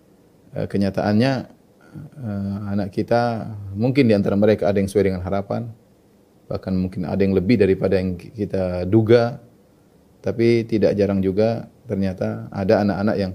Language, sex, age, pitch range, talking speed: Indonesian, male, 30-49, 95-110 Hz, 130 wpm